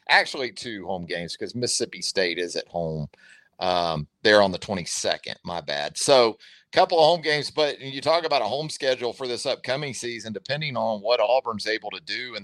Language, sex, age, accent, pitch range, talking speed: English, male, 40-59, American, 115-155 Hz, 205 wpm